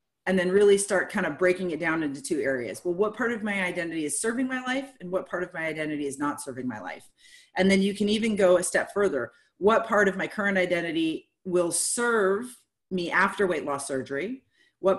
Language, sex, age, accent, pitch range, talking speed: English, female, 30-49, American, 170-230 Hz, 225 wpm